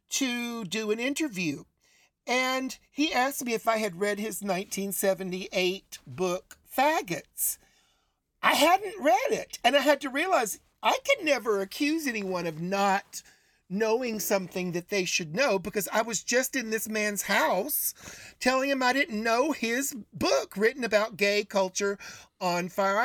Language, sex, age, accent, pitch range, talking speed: English, male, 50-69, American, 185-250 Hz, 155 wpm